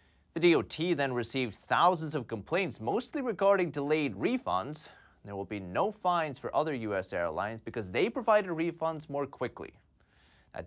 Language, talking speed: English, 150 wpm